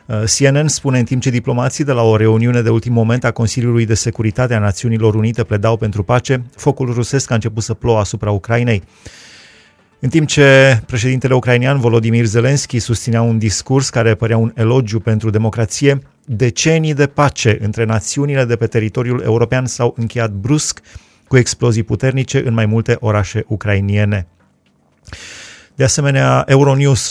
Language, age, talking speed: Romanian, 30-49, 155 wpm